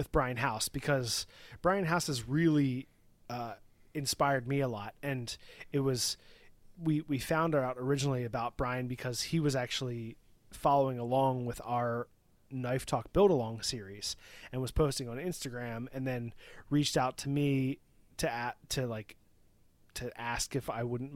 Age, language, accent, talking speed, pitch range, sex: 30-49, English, American, 160 wpm, 115-140 Hz, male